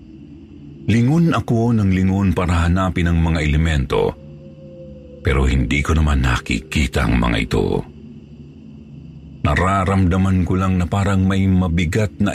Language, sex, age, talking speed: Filipino, male, 50-69, 120 wpm